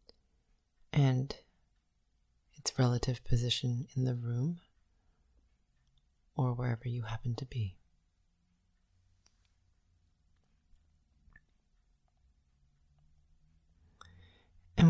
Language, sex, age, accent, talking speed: English, female, 30-49, American, 55 wpm